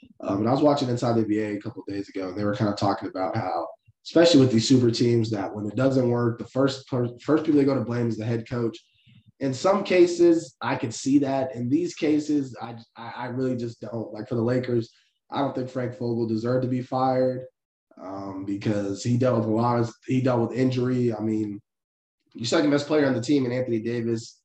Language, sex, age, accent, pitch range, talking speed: English, male, 20-39, American, 110-130 Hz, 235 wpm